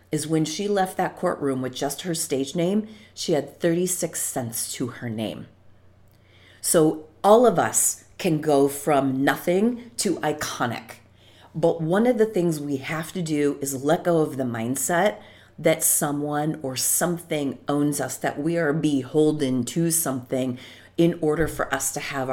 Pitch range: 130-160 Hz